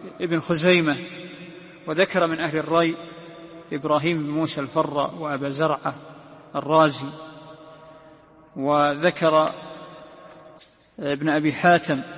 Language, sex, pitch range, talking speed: Arabic, male, 155-180 Hz, 85 wpm